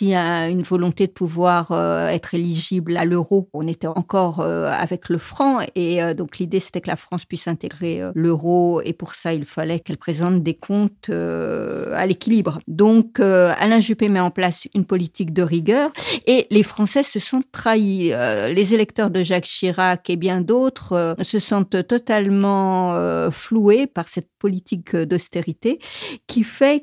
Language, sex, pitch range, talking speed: French, female, 180-225 Hz, 155 wpm